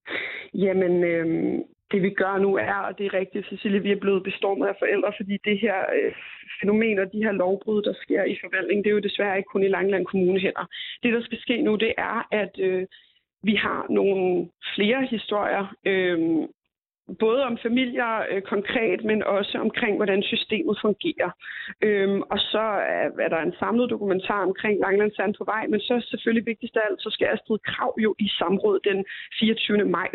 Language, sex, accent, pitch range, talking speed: Danish, female, native, 195-225 Hz, 195 wpm